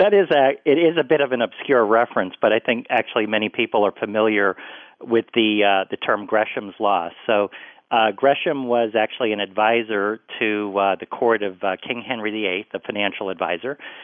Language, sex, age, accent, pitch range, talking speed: English, male, 40-59, American, 105-125 Hz, 195 wpm